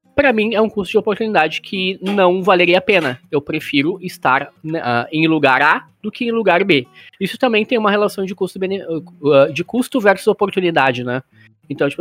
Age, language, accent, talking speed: 20-39, Portuguese, Brazilian, 200 wpm